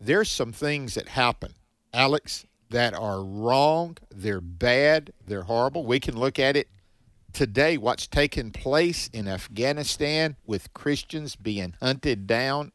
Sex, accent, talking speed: male, American, 135 wpm